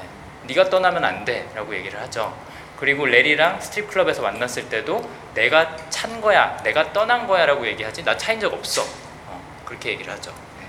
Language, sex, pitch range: Korean, male, 155-215 Hz